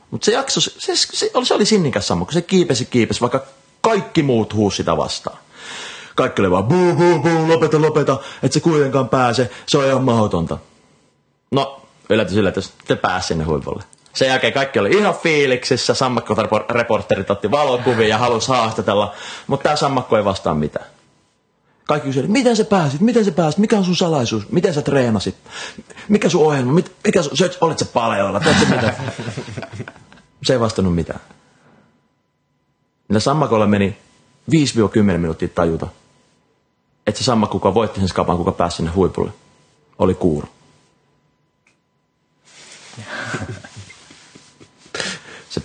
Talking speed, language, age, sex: 135 wpm, Finnish, 30-49, male